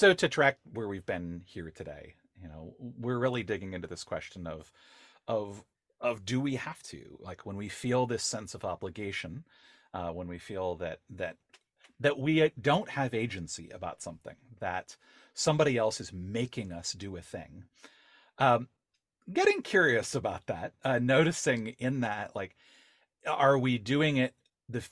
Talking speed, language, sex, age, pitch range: 165 wpm, English, male, 40-59, 90-130 Hz